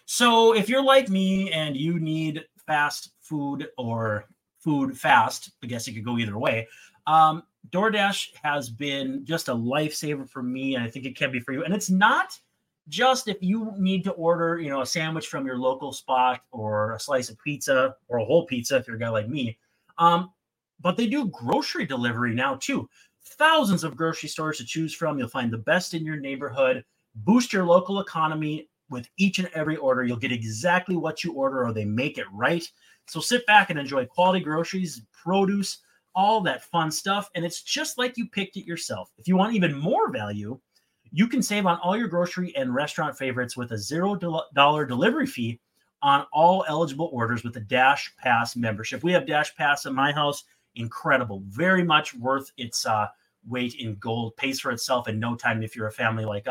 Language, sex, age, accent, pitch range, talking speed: English, male, 30-49, American, 125-185 Hz, 200 wpm